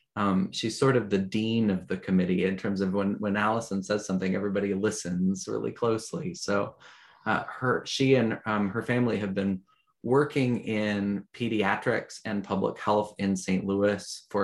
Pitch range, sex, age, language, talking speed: 95-110 Hz, male, 20-39, English, 170 wpm